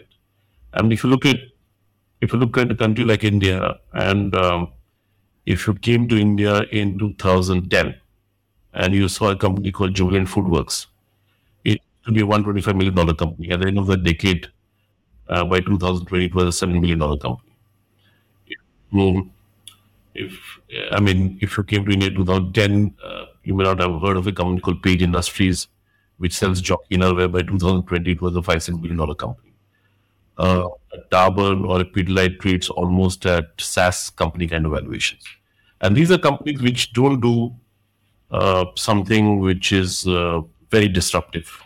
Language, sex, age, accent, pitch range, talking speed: English, male, 60-79, Indian, 90-105 Hz, 170 wpm